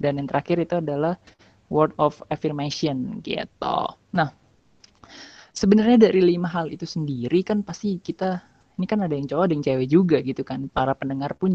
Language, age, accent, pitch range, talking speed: Indonesian, 20-39, native, 145-175 Hz, 170 wpm